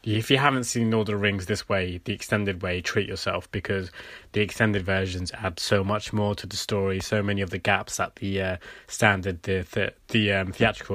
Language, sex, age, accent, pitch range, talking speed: English, male, 20-39, British, 95-105 Hz, 225 wpm